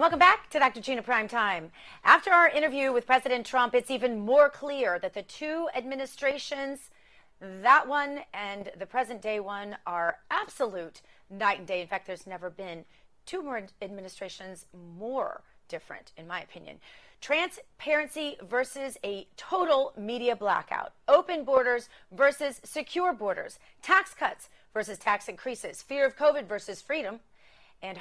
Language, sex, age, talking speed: English, female, 30-49, 145 wpm